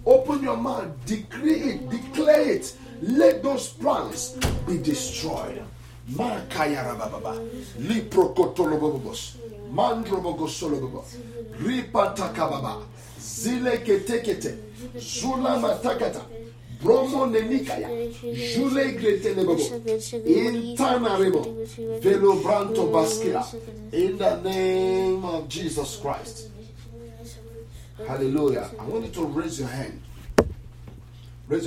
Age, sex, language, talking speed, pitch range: 50-69, male, English, 105 wpm, 120-175 Hz